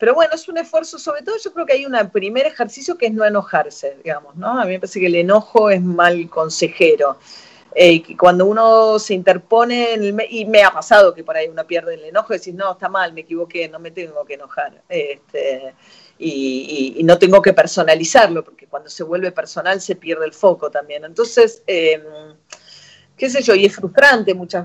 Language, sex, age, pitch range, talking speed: Spanish, female, 40-59, 160-240 Hz, 210 wpm